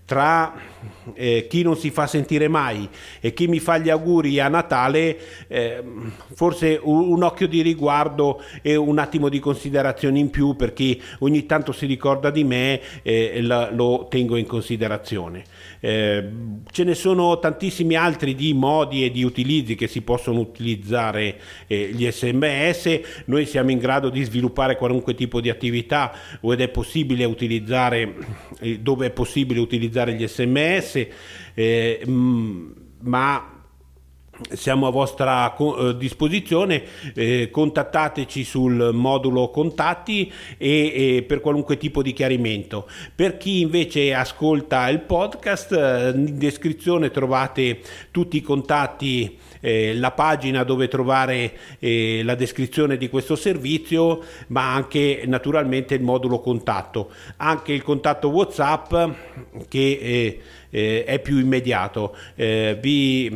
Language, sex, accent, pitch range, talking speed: Italian, male, native, 120-150 Hz, 130 wpm